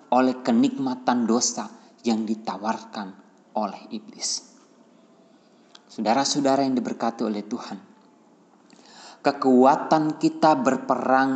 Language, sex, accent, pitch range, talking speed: Indonesian, male, native, 125-185 Hz, 80 wpm